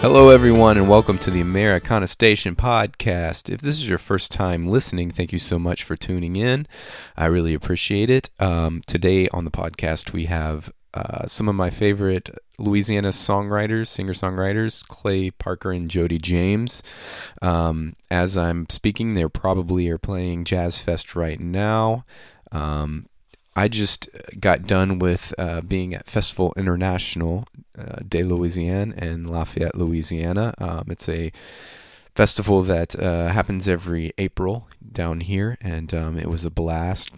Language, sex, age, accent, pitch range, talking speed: English, male, 30-49, American, 85-100 Hz, 150 wpm